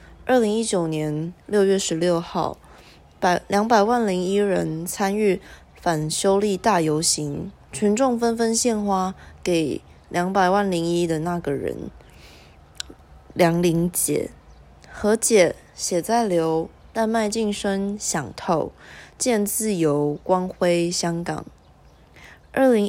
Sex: female